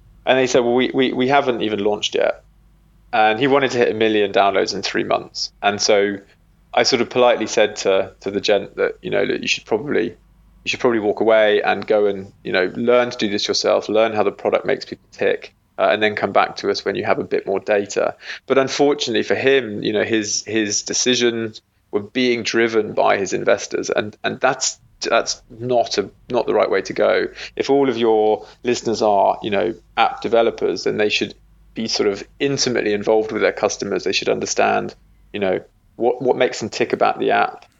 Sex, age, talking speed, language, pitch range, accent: male, 20-39, 220 wpm, English, 105-140 Hz, British